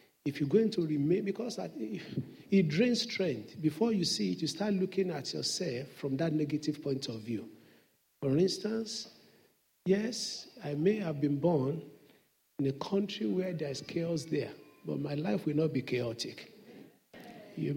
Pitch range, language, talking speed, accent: 145-185 Hz, English, 160 wpm, Nigerian